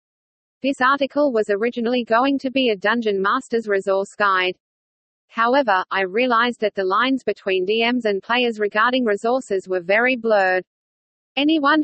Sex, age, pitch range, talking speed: female, 40-59, 205-255 Hz, 140 wpm